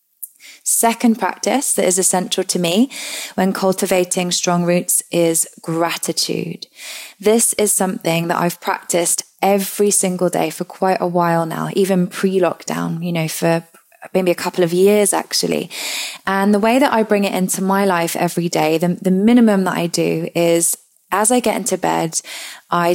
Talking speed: 165 wpm